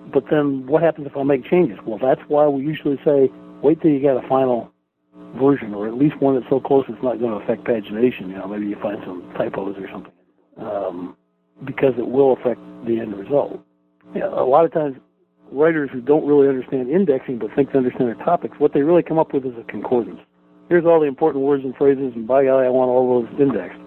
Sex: male